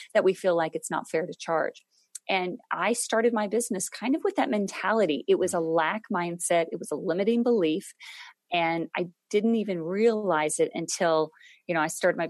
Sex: female